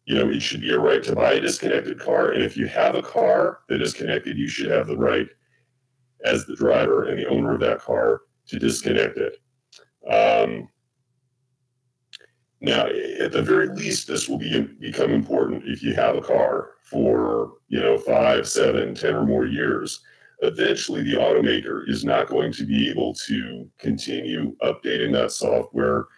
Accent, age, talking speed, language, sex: American, 40-59, 175 wpm, English, male